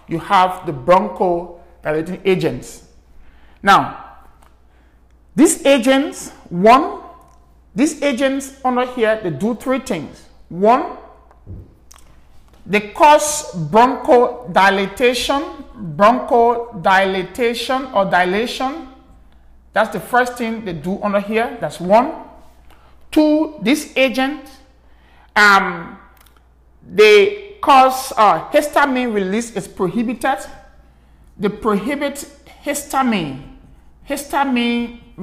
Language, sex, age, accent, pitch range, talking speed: English, male, 50-69, Nigerian, 190-270 Hz, 85 wpm